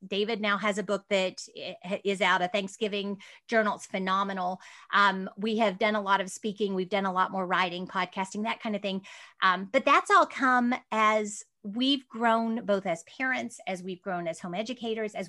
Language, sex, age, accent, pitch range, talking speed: English, female, 30-49, American, 195-250 Hz, 195 wpm